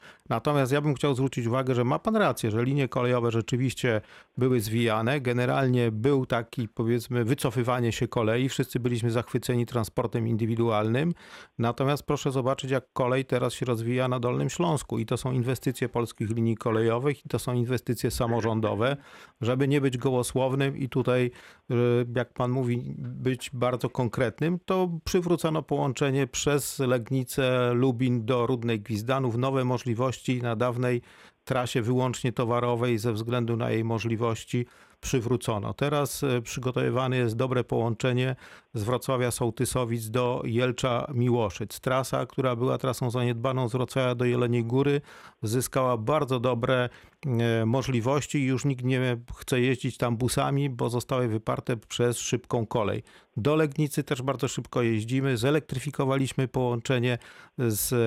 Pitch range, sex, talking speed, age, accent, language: 120-135 Hz, male, 135 wpm, 40-59, native, Polish